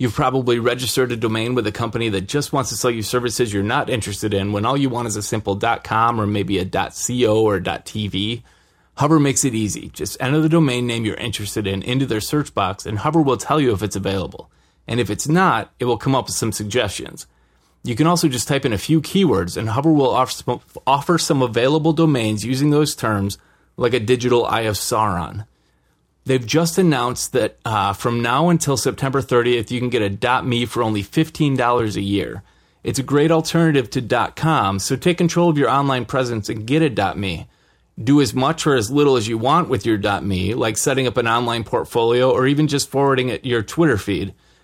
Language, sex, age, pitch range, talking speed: English, male, 30-49, 110-140 Hz, 210 wpm